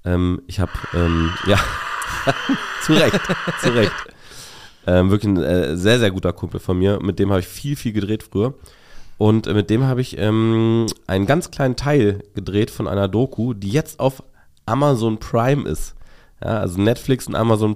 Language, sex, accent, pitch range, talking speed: German, male, German, 90-115 Hz, 180 wpm